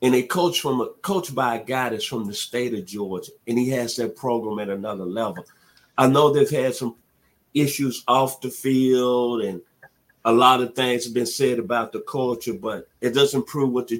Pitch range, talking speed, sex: 115-135 Hz, 210 wpm, male